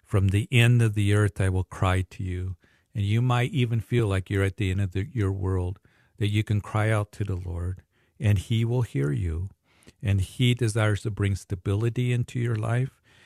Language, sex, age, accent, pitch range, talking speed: English, male, 50-69, American, 95-115 Hz, 215 wpm